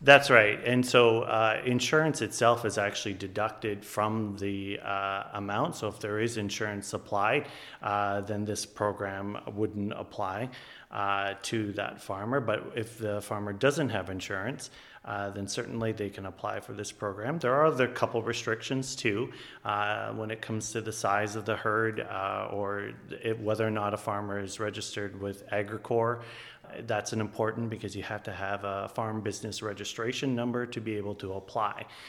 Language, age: English, 30-49